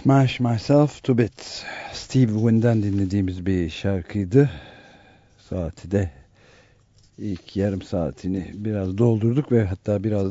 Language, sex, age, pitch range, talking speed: Turkish, male, 60-79, 95-115 Hz, 110 wpm